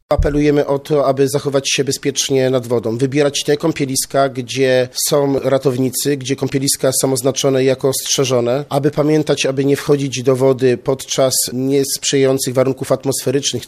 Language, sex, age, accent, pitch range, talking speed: Polish, male, 40-59, native, 95-135 Hz, 140 wpm